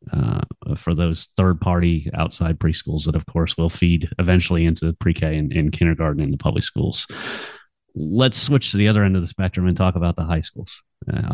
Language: English